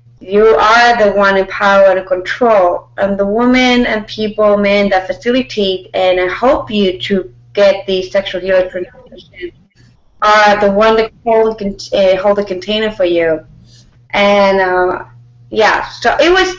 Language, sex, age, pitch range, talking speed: English, female, 30-49, 185-220 Hz, 155 wpm